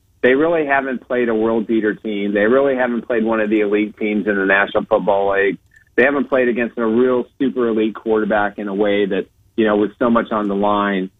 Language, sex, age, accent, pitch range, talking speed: English, male, 40-59, American, 105-120 Hz, 225 wpm